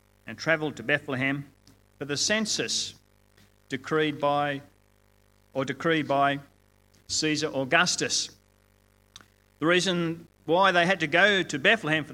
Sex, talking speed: male, 120 wpm